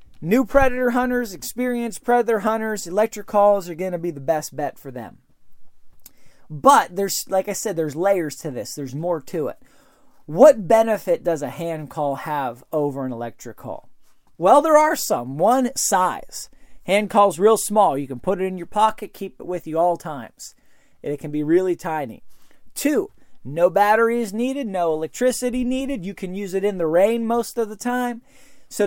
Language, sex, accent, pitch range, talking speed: English, male, American, 150-230 Hz, 185 wpm